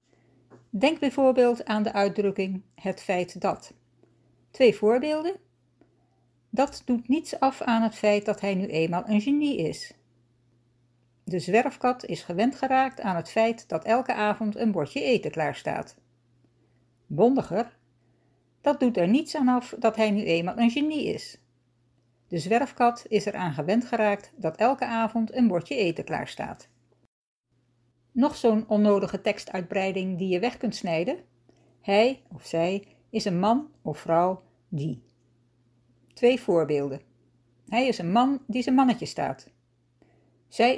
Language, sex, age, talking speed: Dutch, female, 60-79, 145 wpm